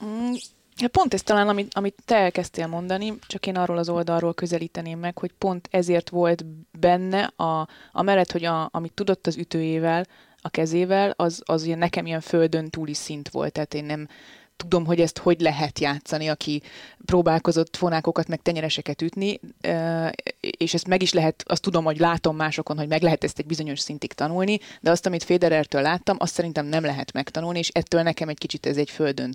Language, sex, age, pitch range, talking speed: Hungarian, female, 20-39, 155-180 Hz, 185 wpm